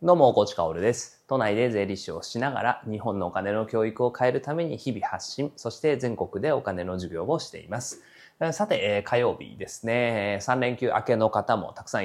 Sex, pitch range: male, 110-170 Hz